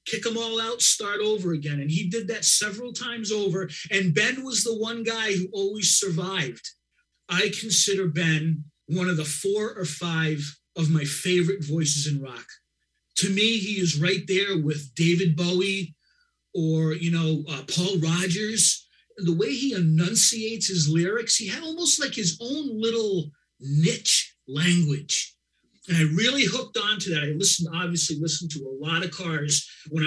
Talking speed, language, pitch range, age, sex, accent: 170 wpm, English, 160-220 Hz, 30-49, male, American